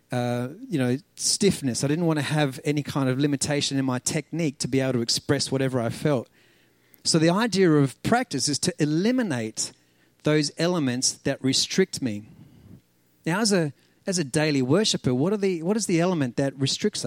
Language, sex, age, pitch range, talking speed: English, male, 40-59, 135-180 Hz, 185 wpm